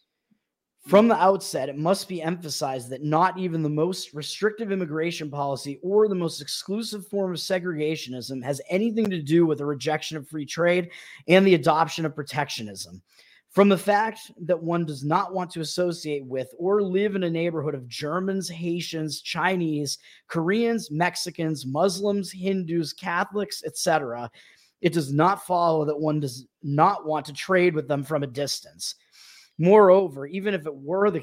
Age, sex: 30-49, male